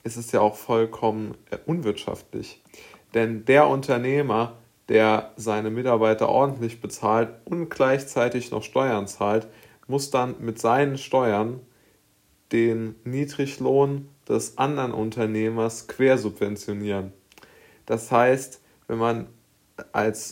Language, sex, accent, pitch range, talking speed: German, male, German, 110-125 Hz, 105 wpm